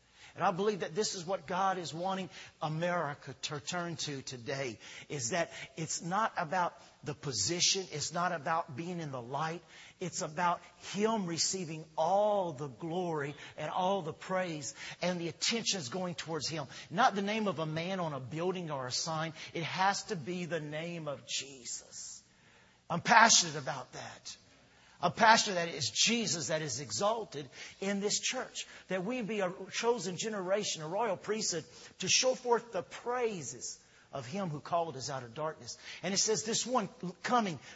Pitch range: 150-195 Hz